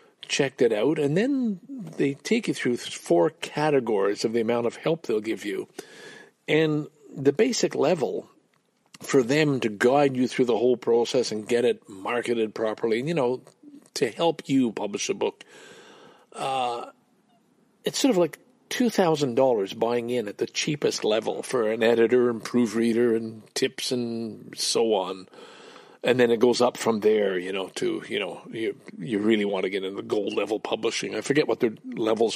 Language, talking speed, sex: English, 180 wpm, male